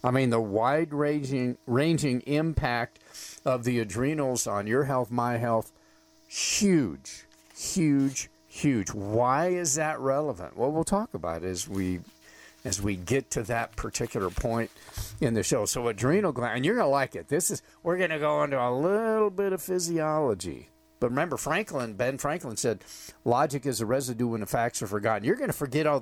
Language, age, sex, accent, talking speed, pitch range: English, 50-69, male, American, 185 wpm, 110-150 Hz